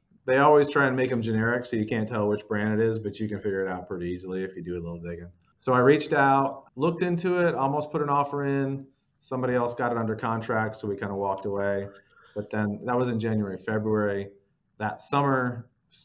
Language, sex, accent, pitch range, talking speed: English, male, American, 95-125 Hz, 235 wpm